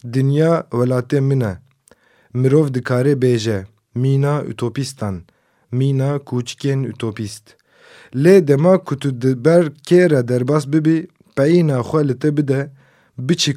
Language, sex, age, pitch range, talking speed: Turkish, male, 30-49, 125-155 Hz, 110 wpm